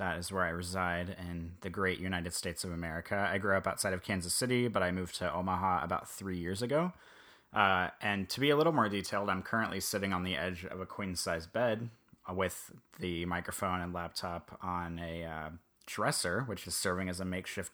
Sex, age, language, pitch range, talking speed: male, 30-49, English, 90-110 Hz, 205 wpm